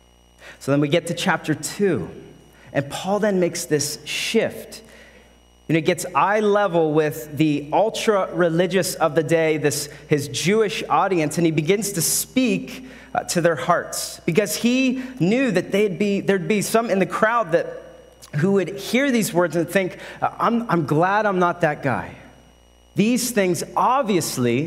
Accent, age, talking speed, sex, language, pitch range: American, 30-49, 165 wpm, male, English, 145-195 Hz